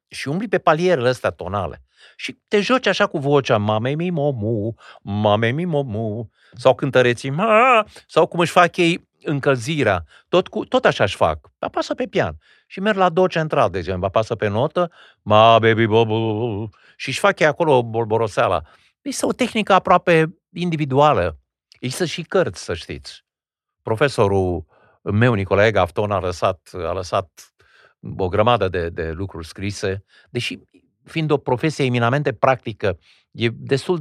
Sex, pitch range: male, 105-175 Hz